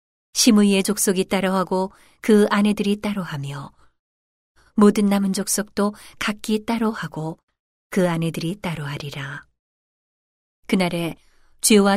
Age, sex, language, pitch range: 40-59, female, Korean, 155-210 Hz